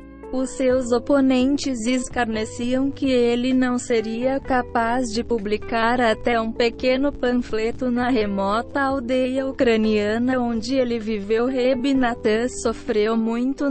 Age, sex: 20-39, female